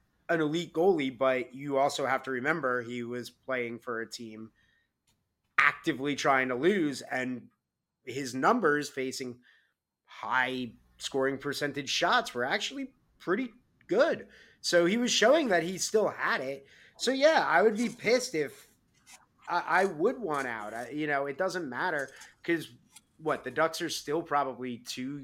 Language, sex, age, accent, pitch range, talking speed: English, male, 30-49, American, 120-170 Hz, 155 wpm